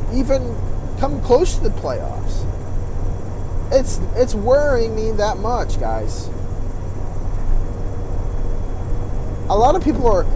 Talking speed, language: 105 wpm, English